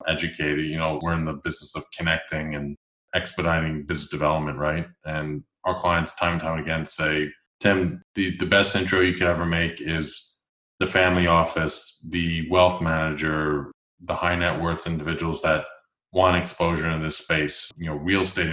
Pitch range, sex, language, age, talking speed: 80-90 Hz, male, English, 20-39, 170 wpm